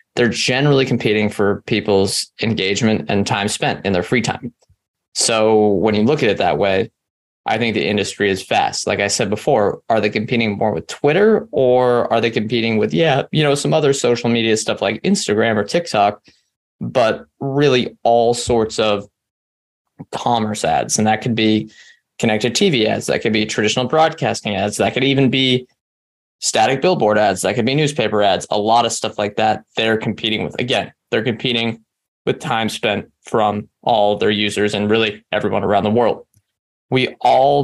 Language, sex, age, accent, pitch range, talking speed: English, male, 20-39, American, 105-120 Hz, 180 wpm